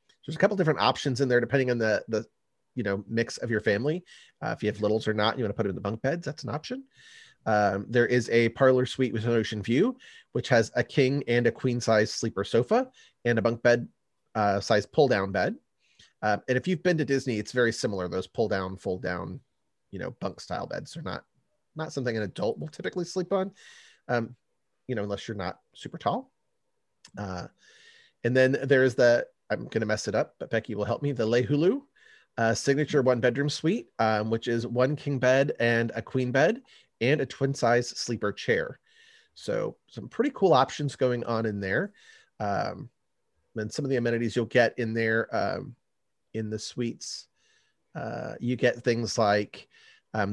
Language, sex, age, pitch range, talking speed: English, male, 30-49, 110-140 Hz, 200 wpm